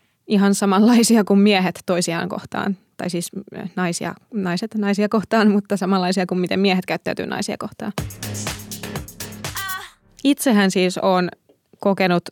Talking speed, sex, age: 110 wpm, female, 20-39